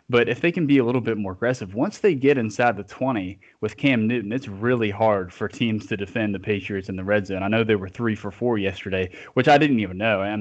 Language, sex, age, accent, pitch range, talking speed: English, male, 20-39, American, 100-120 Hz, 265 wpm